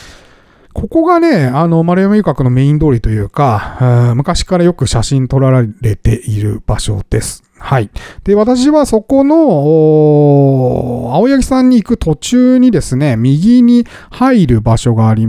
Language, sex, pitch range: Japanese, male, 120-185 Hz